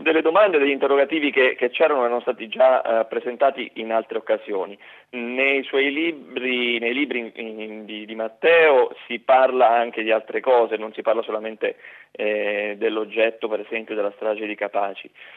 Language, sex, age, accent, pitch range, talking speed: Italian, male, 30-49, native, 115-190 Hz, 170 wpm